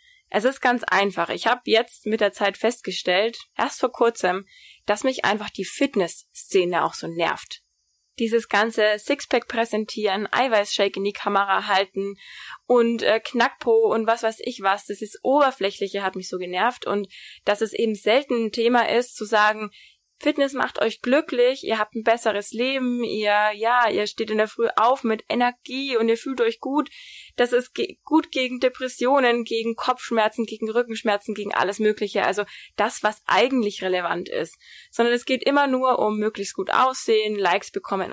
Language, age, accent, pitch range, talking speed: German, 20-39, German, 205-250 Hz, 175 wpm